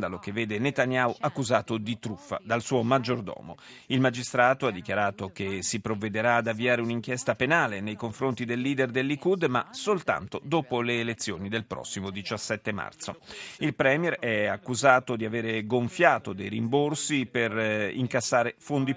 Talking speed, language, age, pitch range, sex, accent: 145 wpm, Italian, 40-59, 110-140 Hz, male, native